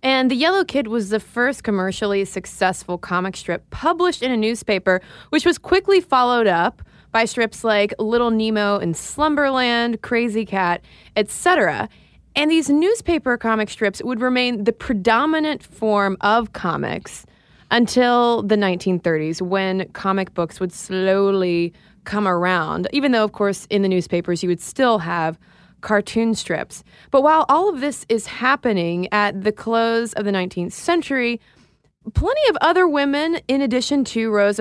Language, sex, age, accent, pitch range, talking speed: English, female, 20-39, American, 195-265 Hz, 150 wpm